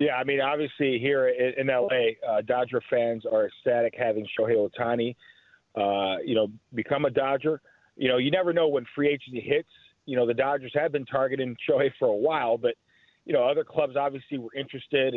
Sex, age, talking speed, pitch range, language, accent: male, 40-59, 195 wpm, 130-160 Hz, English, American